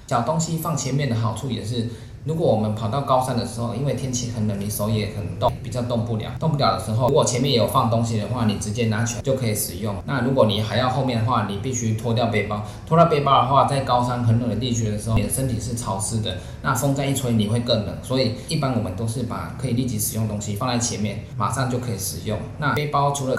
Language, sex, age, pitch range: Chinese, male, 20-39, 110-125 Hz